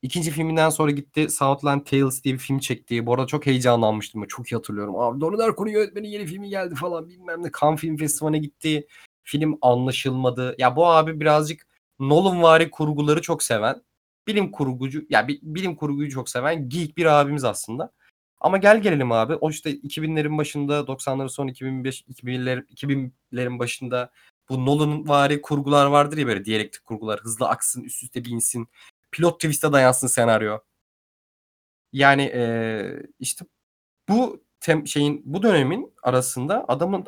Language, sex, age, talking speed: Turkish, male, 30-49, 150 wpm